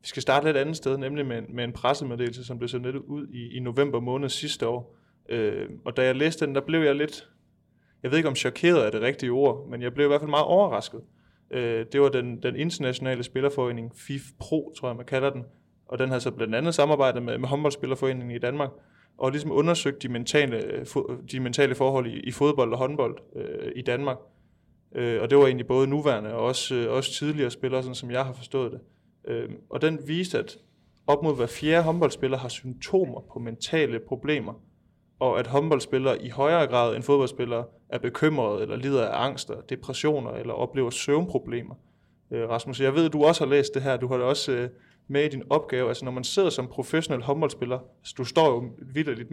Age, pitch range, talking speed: 20-39, 125-145 Hz, 210 wpm